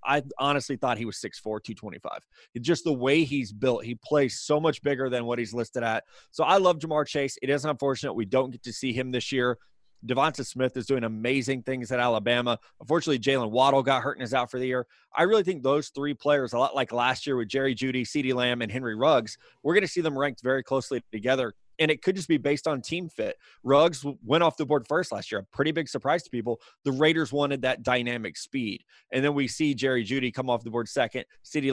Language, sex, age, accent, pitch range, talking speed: English, male, 20-39, American, 120-145 Hz, 240 wpm